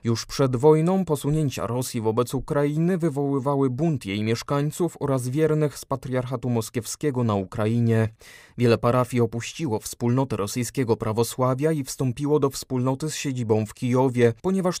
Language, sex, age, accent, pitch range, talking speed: Polish, male, 20-39, native, 115-145 Hz, 135 wpm